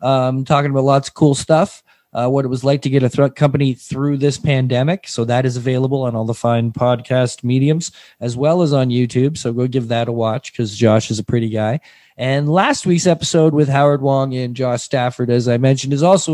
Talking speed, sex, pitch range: 230 wpm, male, 125-155 Hz